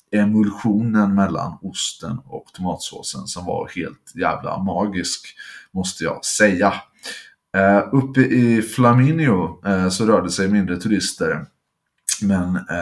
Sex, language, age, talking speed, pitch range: male, English, 30-49, 105 wpm, 95-115 Hz